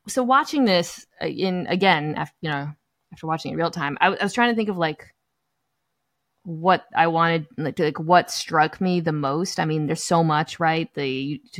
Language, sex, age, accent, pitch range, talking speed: English, female, 20-39, American, 155-200 Hz, 210 wpm